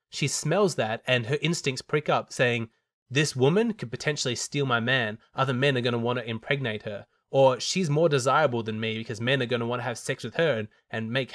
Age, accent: 20-39, Australian